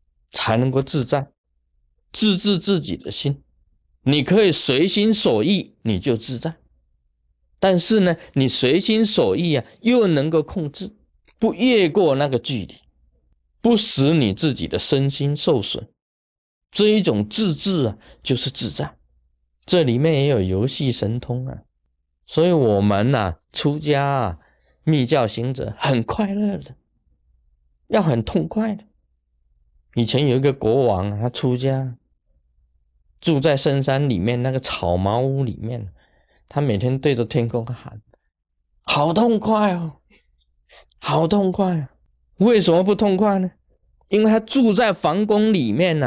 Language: Chinese